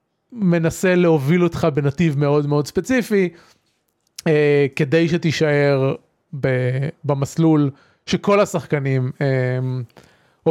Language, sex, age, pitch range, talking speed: Hebrew, male, 30-49, 145-190 Hz, 85 wpm